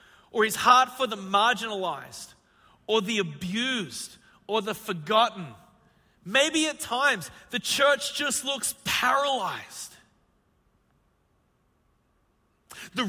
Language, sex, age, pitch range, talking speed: English, male, 40-59, 160-255 Hz, 95 wpm